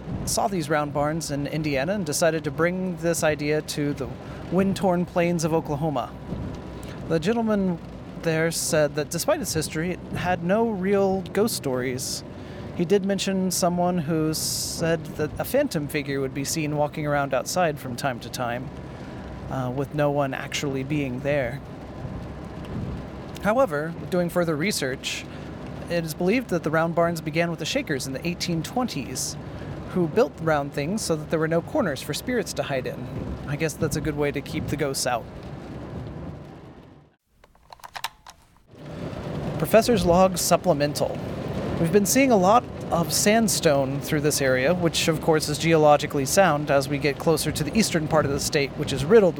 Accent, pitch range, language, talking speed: American, 145-175 Hz, English, 165 wpm